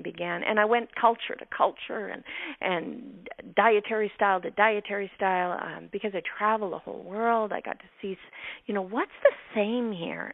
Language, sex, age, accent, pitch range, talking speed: English, female, 50-69, American, 180-235 Hz, 180 wpm